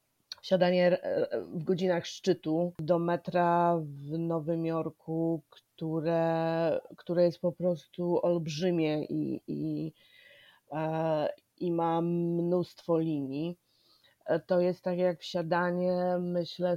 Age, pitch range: 20-39, 165-185 Hz